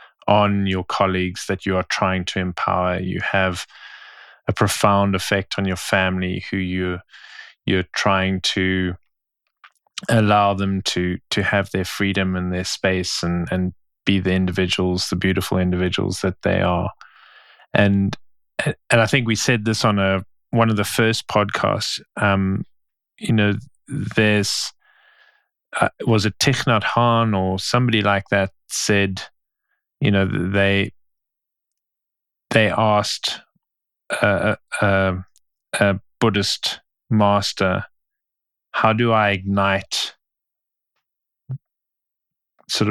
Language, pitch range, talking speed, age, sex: English, 95-105 Hz, 120 wpm, 20-39, male